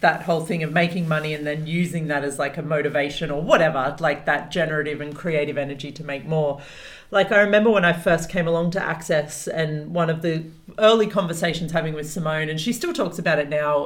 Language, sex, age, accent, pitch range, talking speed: English, female, 40-59, Australian, 155-195 Hz, 220 wpm